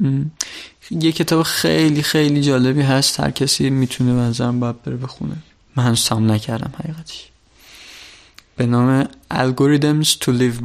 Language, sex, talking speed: Persian, male, 130 wpm